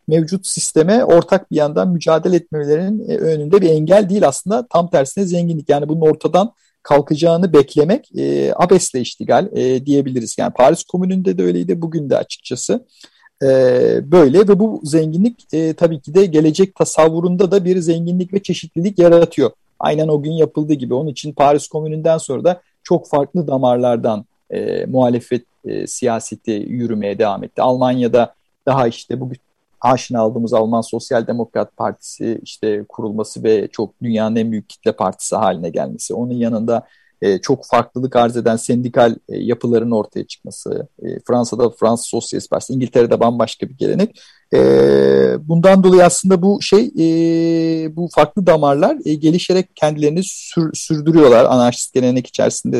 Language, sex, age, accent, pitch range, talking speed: Turkish, male, 50-69, native, 125-175 Hz, 150 wpm